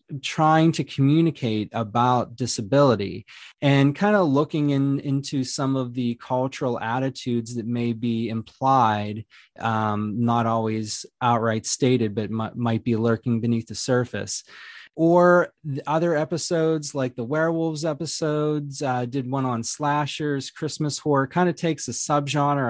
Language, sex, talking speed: English, male, 140 wpm